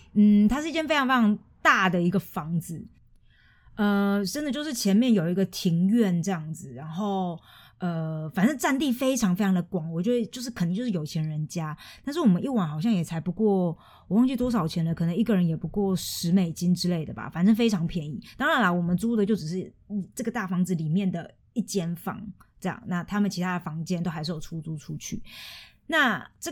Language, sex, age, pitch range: Chinese, female, 20-39, 170-215 Hz